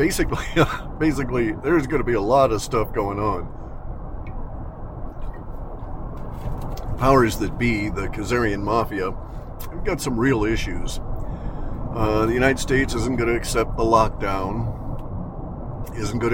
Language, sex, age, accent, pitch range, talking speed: English, male, 50-69, American, 105-120 Hz, 130 wpm